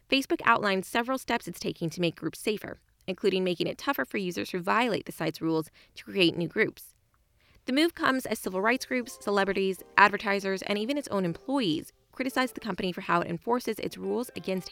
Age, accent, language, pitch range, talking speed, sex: 20-39, American, English, 170-235 Hz, 200 wpm, female